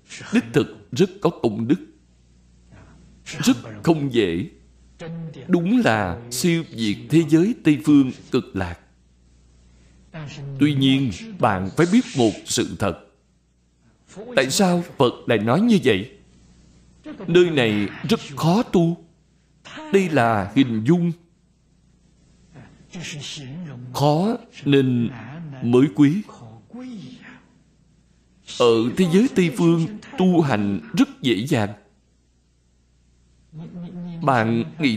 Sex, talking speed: male, 100 wpm